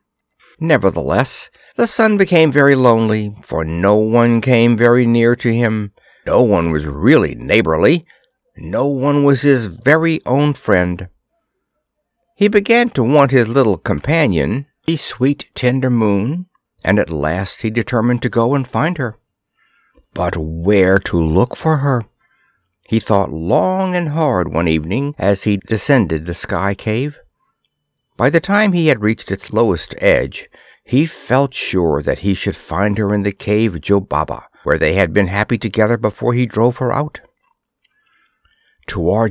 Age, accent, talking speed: 60-79, American, 150 wpm